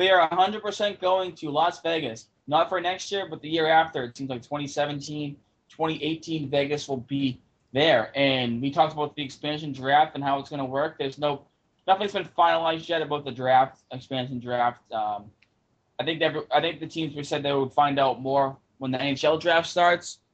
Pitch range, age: 135-165 Hz, 20-39